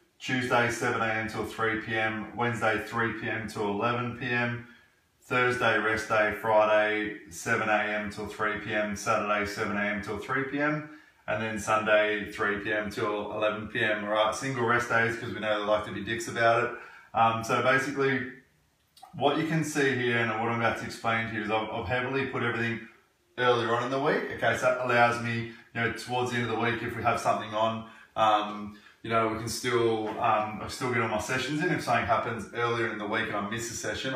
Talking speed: 210 wpm